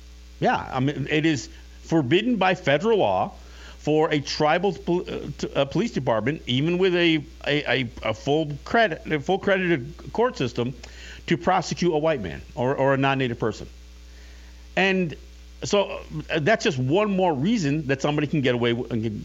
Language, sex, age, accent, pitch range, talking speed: English, male, 50-69, American, 105-155 Hz, 175 wpm